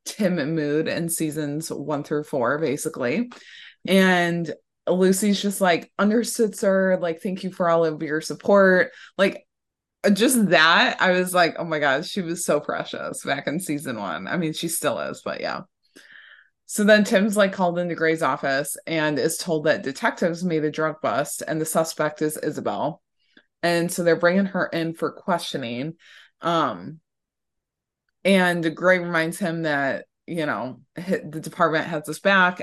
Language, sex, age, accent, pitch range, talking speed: English, female, 20-39, American, 155-185 Hz, 165 wpm